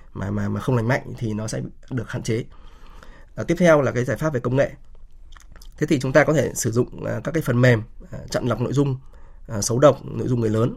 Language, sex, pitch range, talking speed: Vietnamese, male, 110-135 Hz, 245 wpm